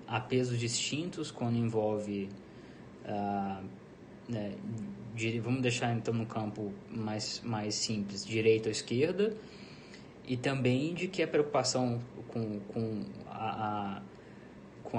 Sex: male